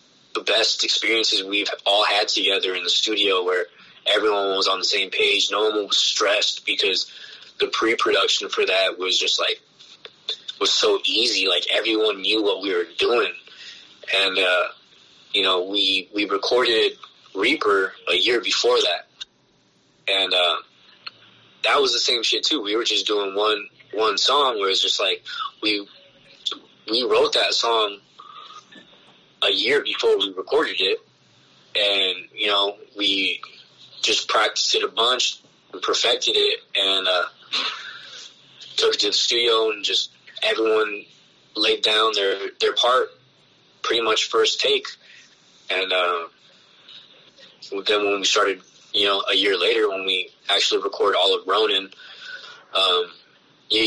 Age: 20-39